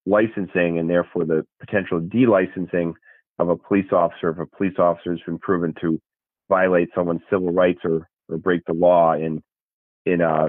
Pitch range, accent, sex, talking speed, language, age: 85-100 Hz, American, male, 170 wpm, English, 40-59